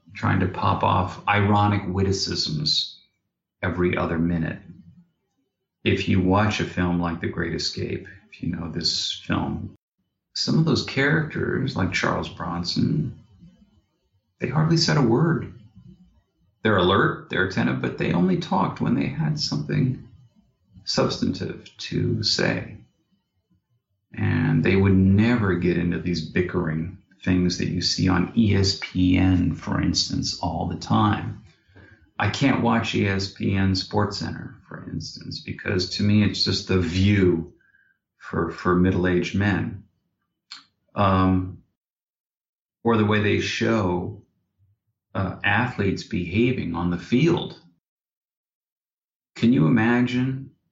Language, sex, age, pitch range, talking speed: English, male, 40-59, 90-110 Hz, 120 wpm